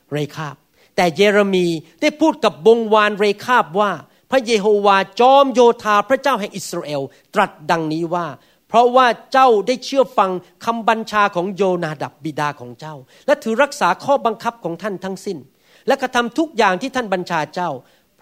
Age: 40-59